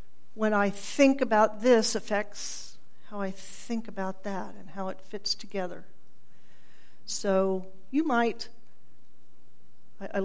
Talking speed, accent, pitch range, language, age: 115 wpm, American, 195-235 Hz, English, 50-69